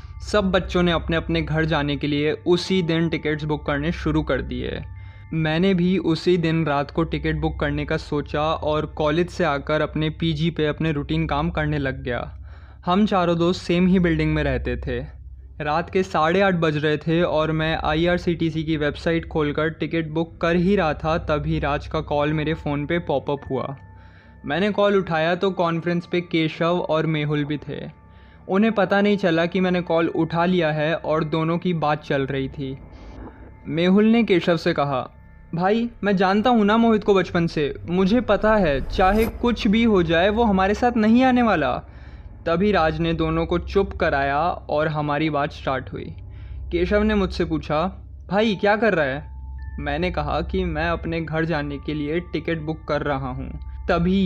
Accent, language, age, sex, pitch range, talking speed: native, Hindi, 20-39, male, 145-180 Hz, 190 wpm